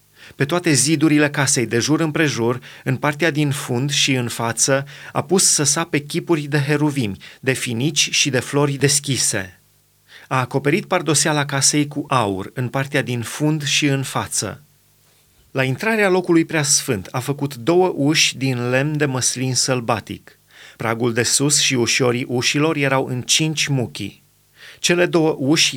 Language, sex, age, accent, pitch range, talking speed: Romanian, male, 30-49, native, 125-150 Hz, 155 wpm